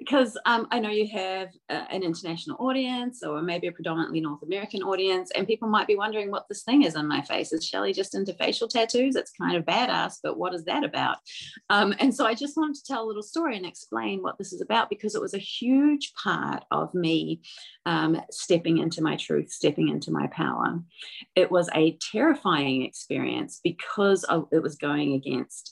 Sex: female